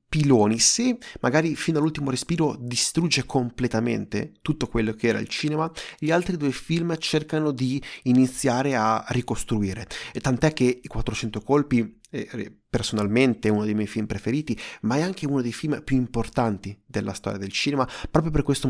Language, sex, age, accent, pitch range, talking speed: Italian, male, 30-49, native, 115-150 Hz, 165 wpm